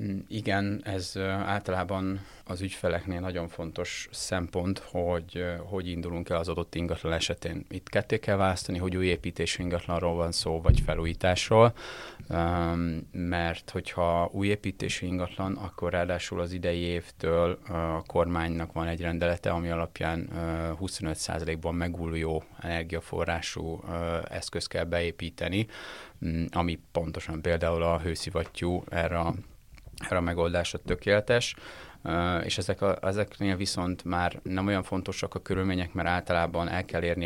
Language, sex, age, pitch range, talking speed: Hungarian, male, 30-49, 85-95 Hz, 125 wpm